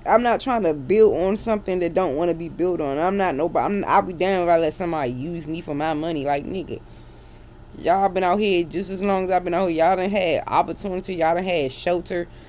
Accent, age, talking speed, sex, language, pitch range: American, 20-39, 250 wpm, female, English, 165-205 Hz